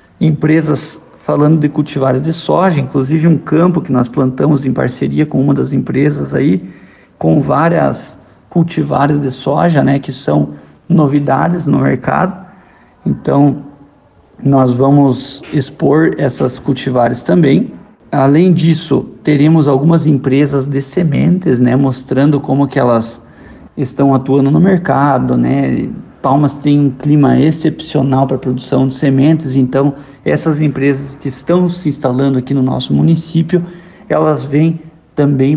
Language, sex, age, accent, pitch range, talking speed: Portuguese, male, 50-69, Brazilian, 135-155 Hz, 130 wpm